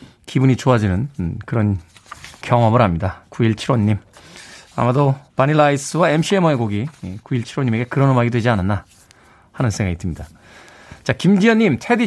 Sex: male